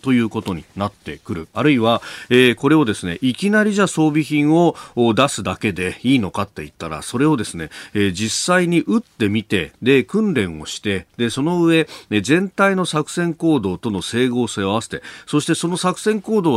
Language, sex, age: Japanese, male, 40-59